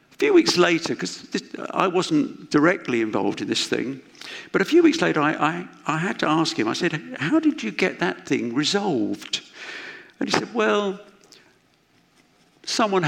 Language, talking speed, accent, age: English, 175 wpm, British, 50-69